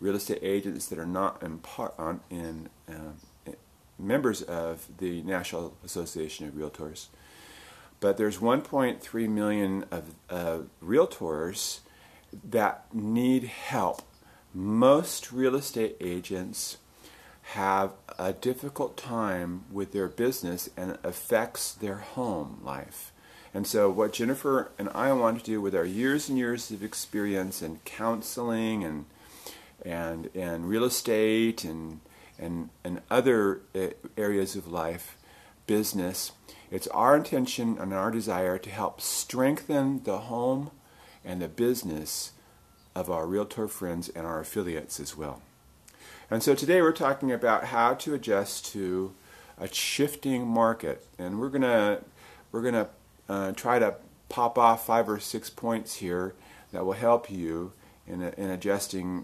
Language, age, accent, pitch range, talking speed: English, 40-59, American, 85-115 Hz, 140 wpm